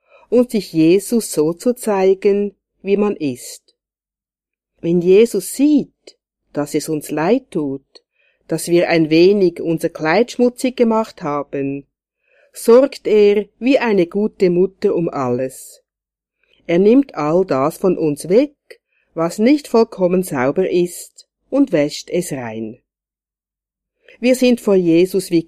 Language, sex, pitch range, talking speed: German, female, 155-235 Hz, 130 wpm